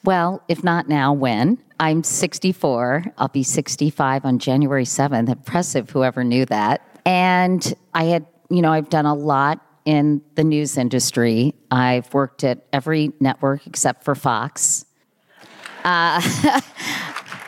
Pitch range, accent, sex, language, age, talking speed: 135-155 Hz, American, female, English, 40-59, 135 wpm